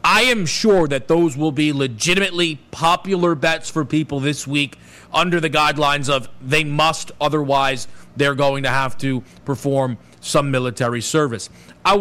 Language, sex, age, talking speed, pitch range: English, male, 40-59, 155 wpm, 140-165 Hz